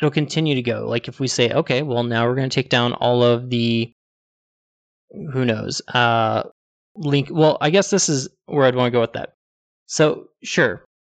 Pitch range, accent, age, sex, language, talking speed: 115-150 Hz, American, 20-39, male, English, 200 wpm